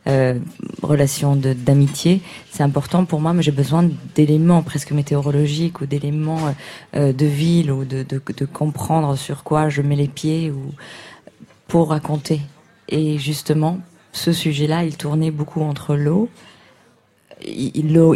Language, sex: French, female